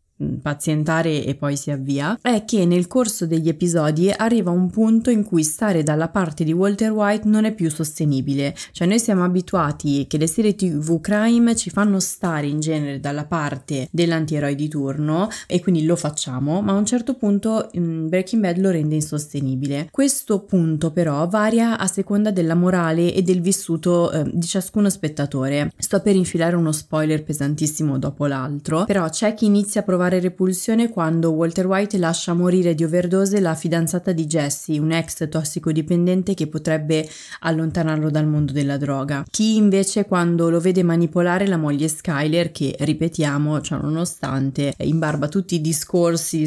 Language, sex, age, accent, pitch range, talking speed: Italian, female, 20-39, native, 155-190 Hz, 160 wpm